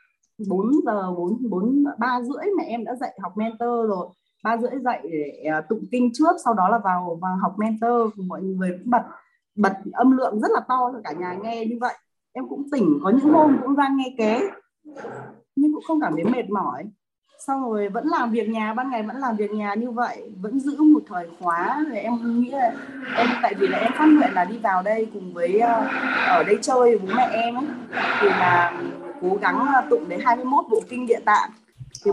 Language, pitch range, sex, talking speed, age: Vietnamese, 205-260 Hz, female, 210 wpm, 20-39